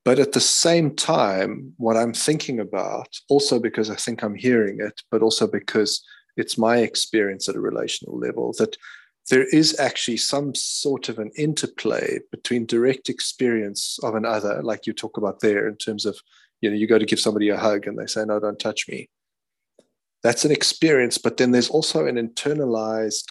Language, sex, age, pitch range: English, male, 30-49, 105-120 Hz